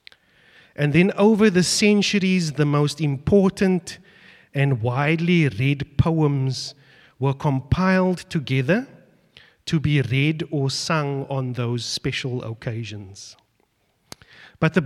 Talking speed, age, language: 105 wpm, 30-49, English